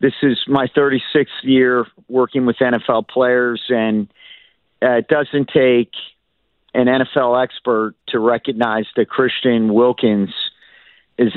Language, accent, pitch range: English, American, 115-130 Hz